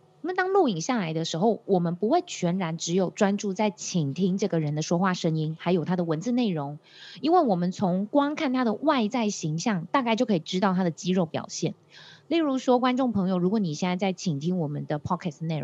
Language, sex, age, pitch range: Chinese, female, 20-39, 170-220 Hz